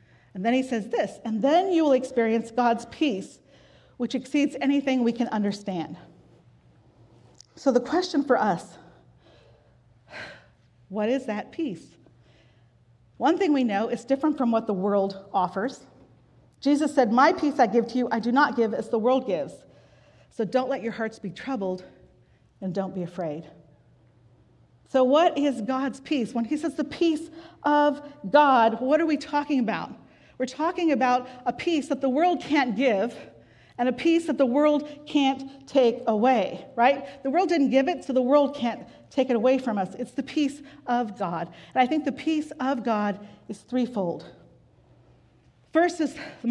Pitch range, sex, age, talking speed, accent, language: 210-285 Hz, female, 40-59, 170 wpm, American, English